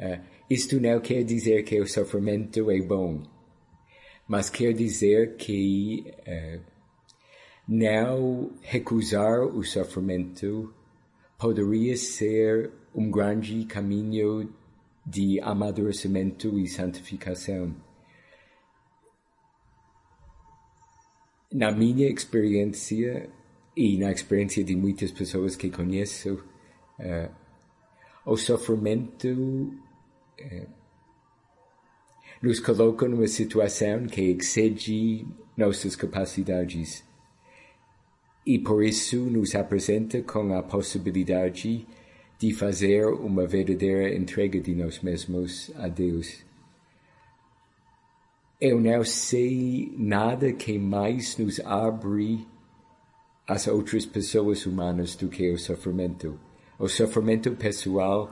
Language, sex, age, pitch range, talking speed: Portuguese, male, 50-69, 95-115 Hz, 90 wpm